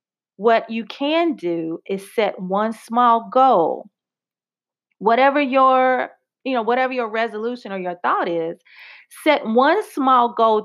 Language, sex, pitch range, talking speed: English, female, 205-255 Hz, 135 wpm